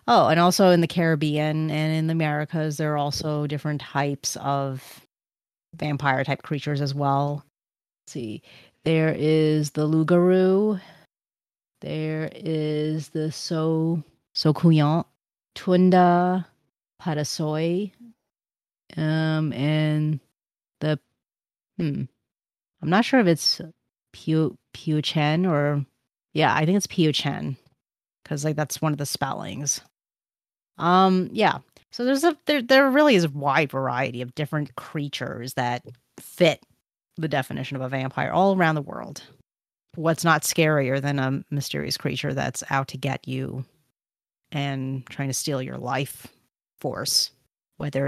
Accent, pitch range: American, 135-165 Hz